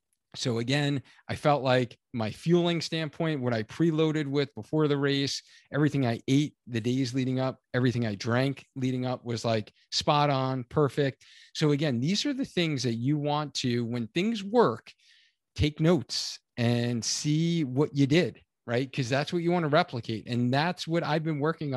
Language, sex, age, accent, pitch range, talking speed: English, male, 40-59, American, 120-150 Hz, 180 wpm